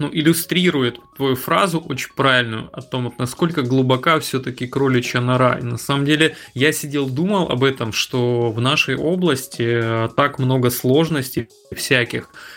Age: 20-39